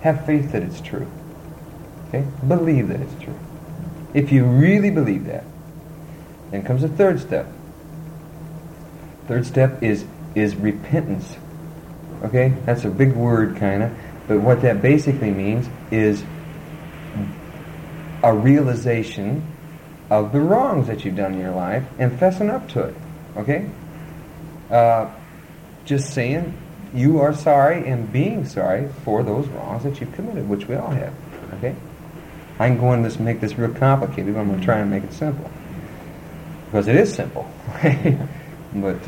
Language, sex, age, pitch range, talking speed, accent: English, male, 40-59, 115-160 Hz, 150 wpm, American